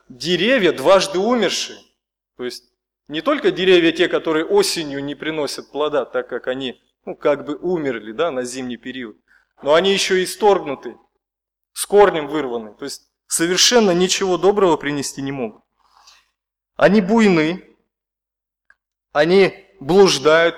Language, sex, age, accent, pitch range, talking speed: Russian, male, 20-39, native, 130-190 Hz, 130 wpm